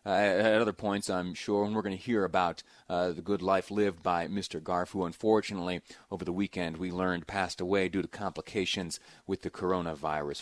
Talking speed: 200 wpm